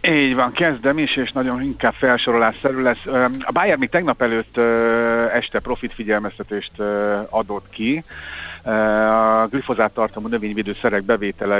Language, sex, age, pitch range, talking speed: Hungarian, male, 50-69, 100-120 Hz, 125 wpm